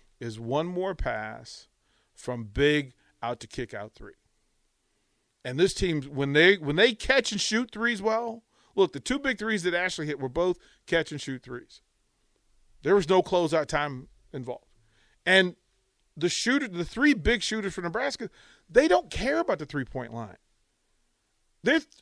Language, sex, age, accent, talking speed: English, male, 40-59, American, 165 wpm